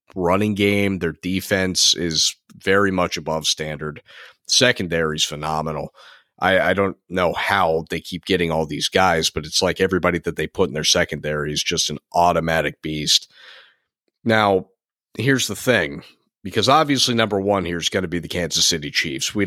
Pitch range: 80-105 Hz